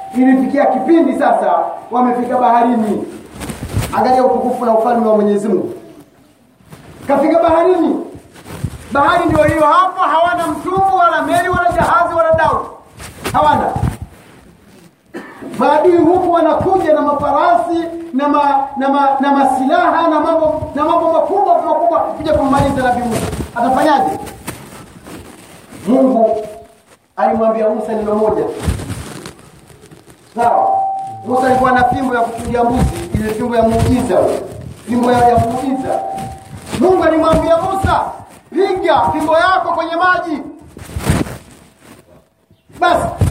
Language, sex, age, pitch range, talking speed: Swahili, male, 40-59, 255-330 Hz, 110 wpm